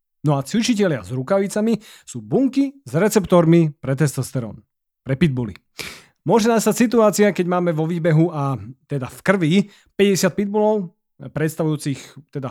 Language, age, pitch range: Slovak, 30-49, 140-200 Hz